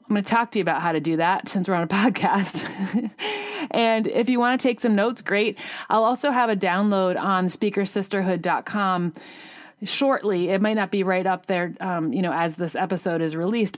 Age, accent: 30-49, American